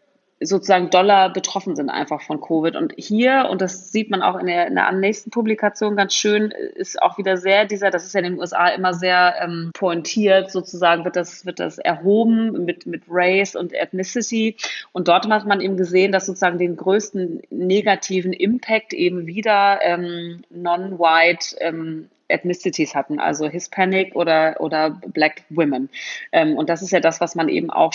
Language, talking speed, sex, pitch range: German, 180 wpm, female, 170-215 Hz